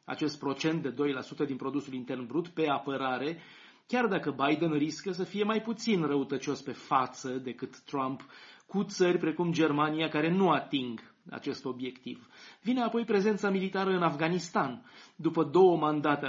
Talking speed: 150 wpm